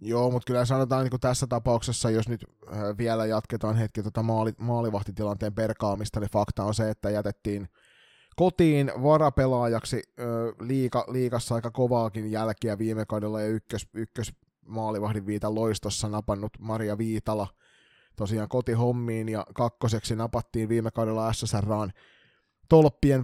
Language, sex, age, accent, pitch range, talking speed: Finnish, male, 20-39, native, 105-130 Hz, 115 wpm